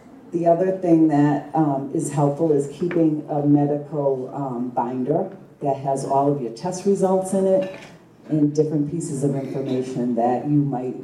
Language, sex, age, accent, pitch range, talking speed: English, female, 40-59, American, 125-145 Hz, 165 wpm